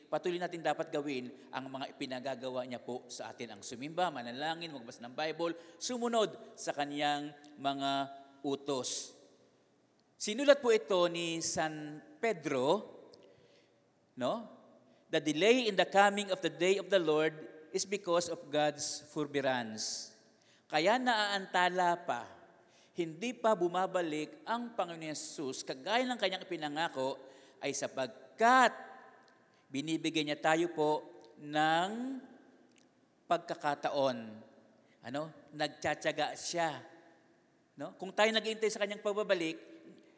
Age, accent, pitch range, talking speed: 50-69, Filipino, 145-200 Hz, 115 wpm